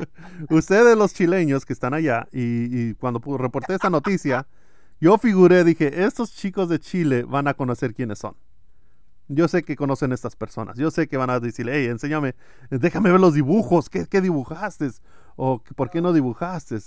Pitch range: 115-150 Hz